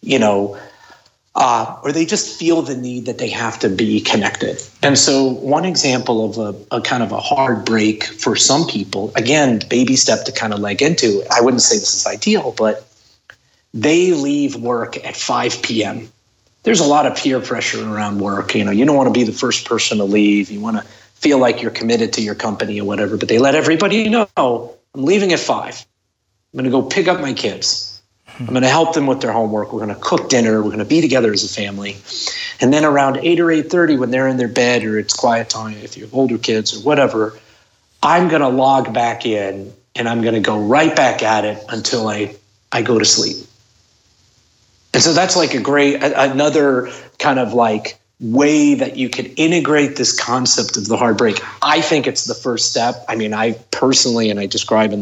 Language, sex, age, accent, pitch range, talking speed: English, male, 30-49, American, 105-135 Hz, 215 wpm